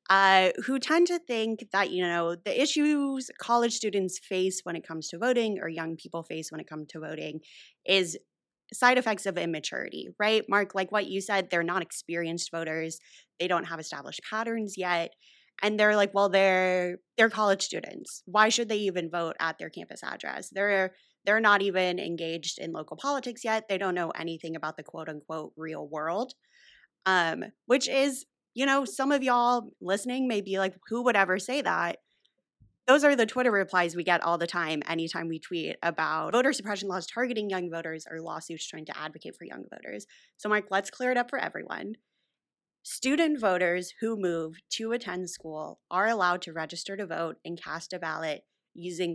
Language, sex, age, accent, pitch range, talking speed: English, female, 20-39, American, 165-225 Hz, 190 wpm